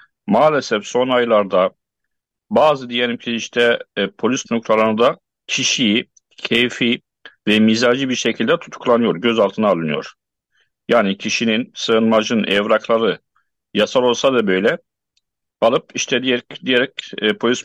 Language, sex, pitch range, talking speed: Turkish, male, 120-145 Hz, 110 wpm